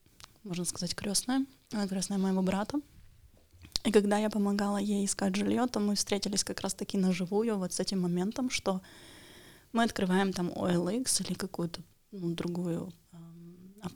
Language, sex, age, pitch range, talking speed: Russian, female, 20-39, 185-210 Hz, 150 wpm